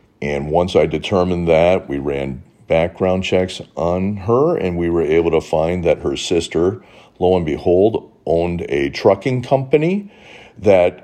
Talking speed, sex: 150 wpm, male